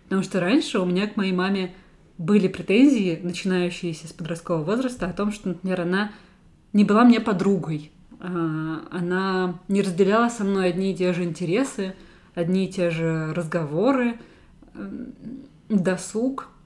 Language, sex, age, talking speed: Russian, female, 20-39, 140 wpm